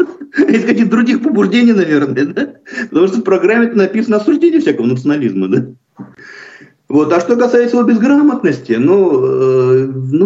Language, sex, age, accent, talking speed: Russian, male, 50-69, native, 135 wpm